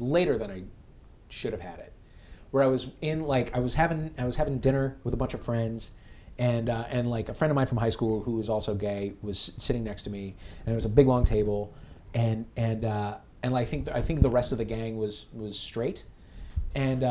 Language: English